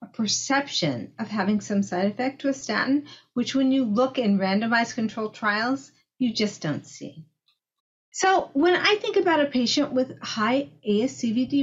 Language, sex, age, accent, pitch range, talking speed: English, female, 50-69, American, 185-260 Hz, 155 wpm